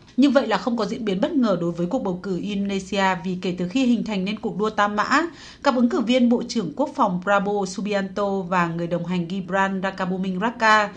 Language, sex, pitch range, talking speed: Vietnamese, female, 185-245 Hz, 235 wpm